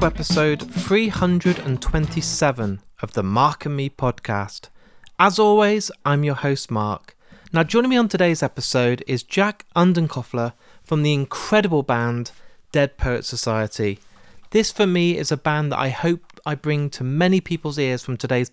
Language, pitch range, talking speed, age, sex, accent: English, 125-170 Hz, 150 wpm, 30-49, male, British